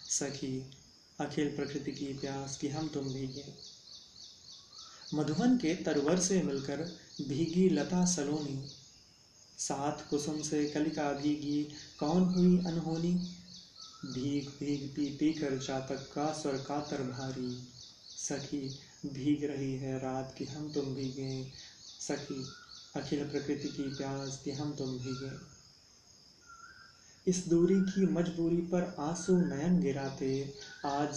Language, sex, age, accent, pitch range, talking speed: Hindi, male, 30-49, native, 135-150 Hz, 120 wpm